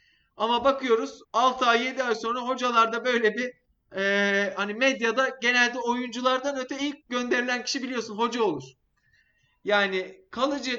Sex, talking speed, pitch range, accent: male, 135 wpm, 185-245 Hz, native